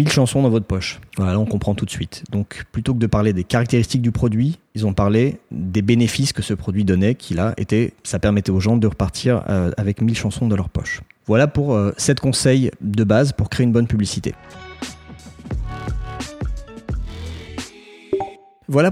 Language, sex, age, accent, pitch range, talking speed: French, male, 30-49, French, 105-140 Hz, 180 wpm